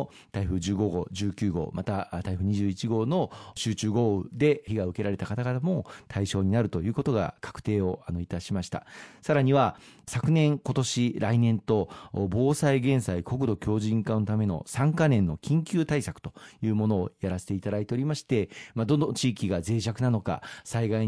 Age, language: 40-59, Japanese